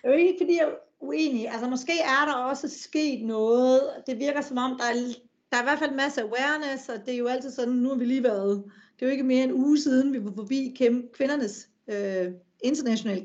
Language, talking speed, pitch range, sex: Danish, 240 wpm, 220-275 Hz, female